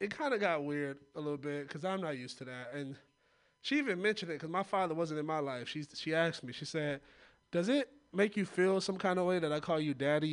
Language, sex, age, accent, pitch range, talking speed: English, male, 20-39, American, 135-195 Hz, 265 wpm